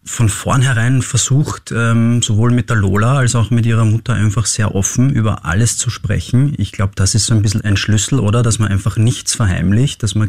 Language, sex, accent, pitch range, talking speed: German, male, German, 100-120 Hz, 210 wpm